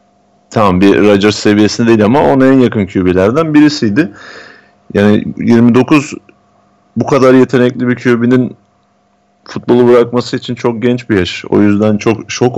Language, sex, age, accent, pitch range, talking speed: Turkish, male, 30-49, native, 100-130 Hz, 140 wpm